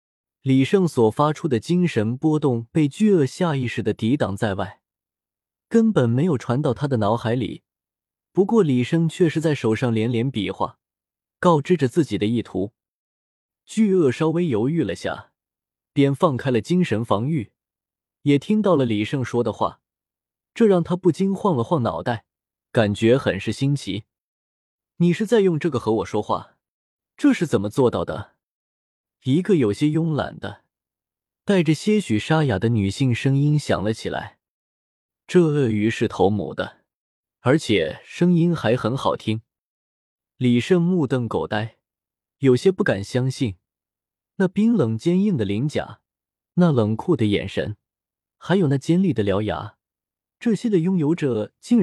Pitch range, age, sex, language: 110-175 Hz, 20-39, male, Chinese